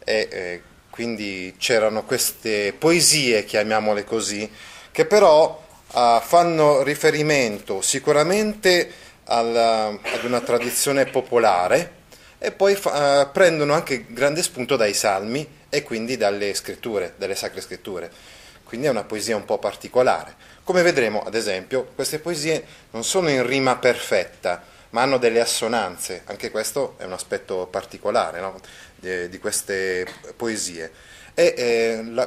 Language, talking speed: Italian, 130 wpm